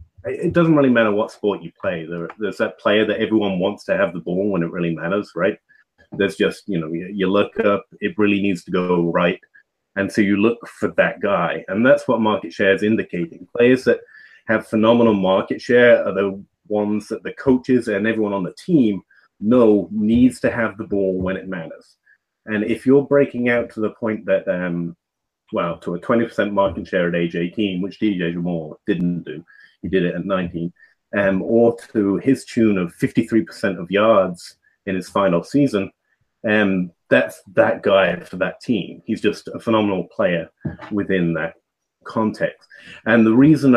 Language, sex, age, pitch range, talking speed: English, male, 30-49, 95-115 Hz, 185 wpm